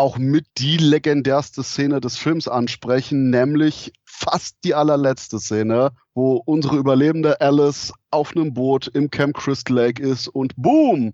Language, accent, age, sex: German, German, 30-49, male